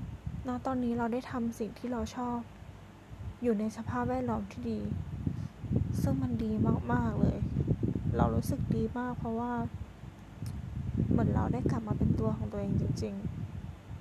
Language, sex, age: Thai, female, 20-39